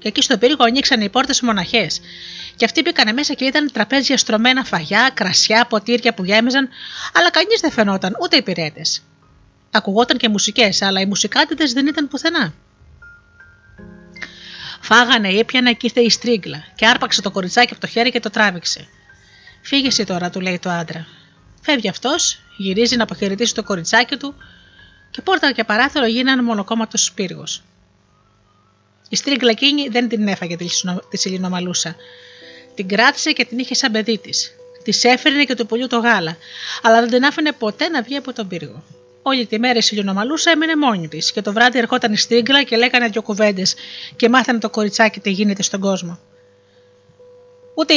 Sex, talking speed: female, 175 wpm